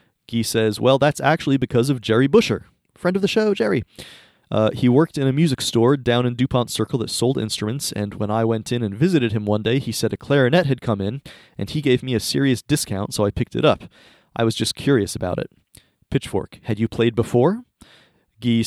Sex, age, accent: male, 30-49, American